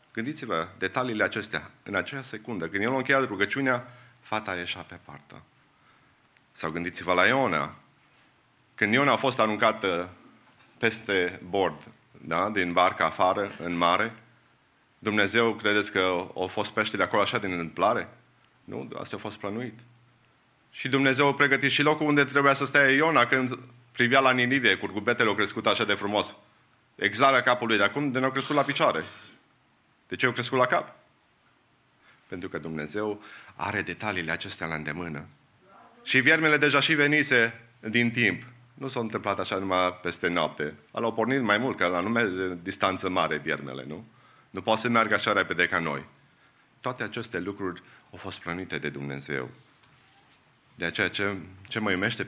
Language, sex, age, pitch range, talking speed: English, male, 30-49, 90-125 Hz, 160 wpm